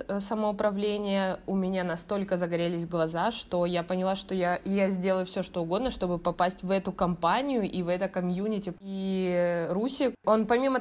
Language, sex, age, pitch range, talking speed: Russian, female, 20-39, 185-225 Hz, 160 wpm